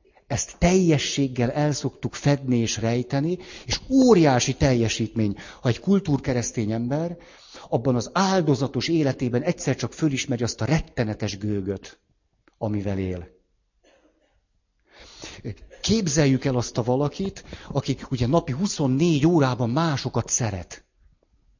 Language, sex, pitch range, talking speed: Hungarian, male, 115-155 Hz, 105 wpm